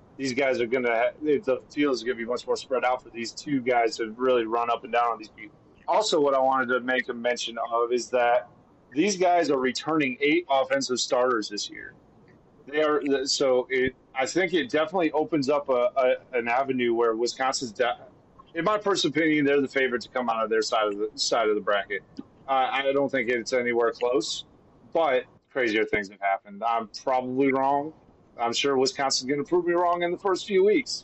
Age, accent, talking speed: 30-49, American, 215 wpm